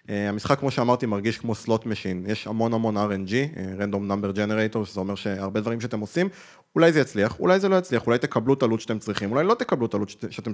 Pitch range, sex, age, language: 110-145 Hz, male, 20-39, Hebrew